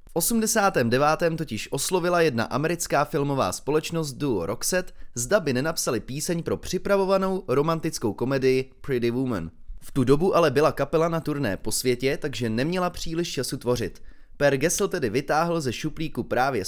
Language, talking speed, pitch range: Czech, 150 wpm, 120-165 Hz